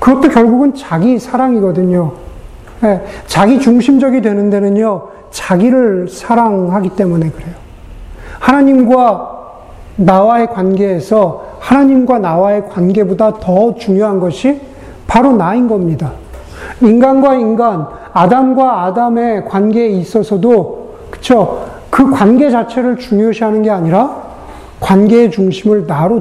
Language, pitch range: Korean, 180-240 Hz